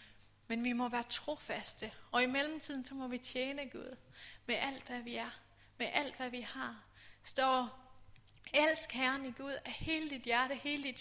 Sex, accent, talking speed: female, native, 185 wpm